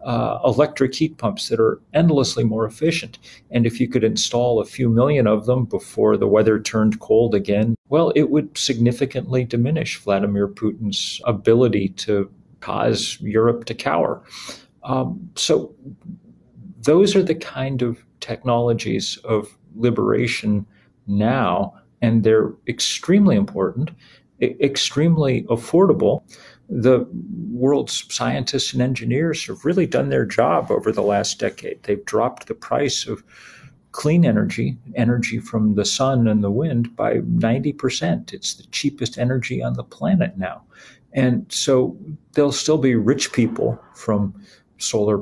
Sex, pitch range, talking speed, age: male, 110-145 Hz, 135 wpm, 40-59